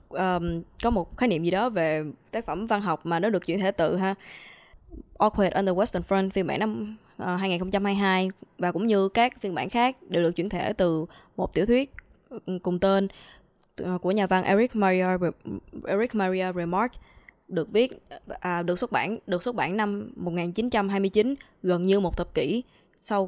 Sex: female